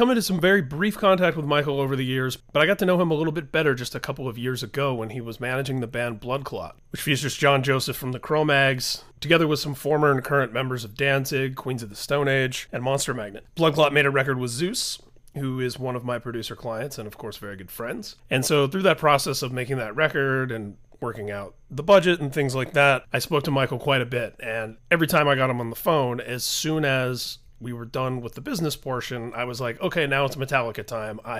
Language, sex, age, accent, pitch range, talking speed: English, male, 30-49, American, 125-155 Hz, 250 wpm